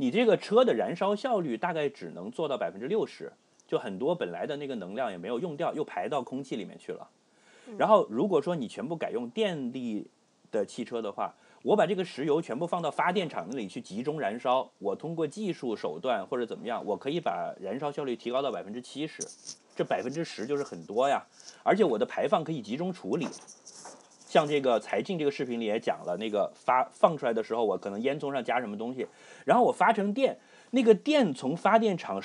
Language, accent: Chinese, native